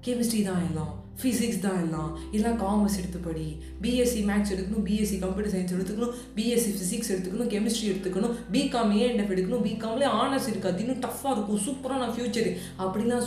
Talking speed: 160 wpm